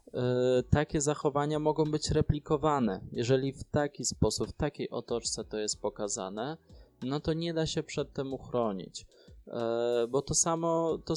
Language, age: Polish, 20-39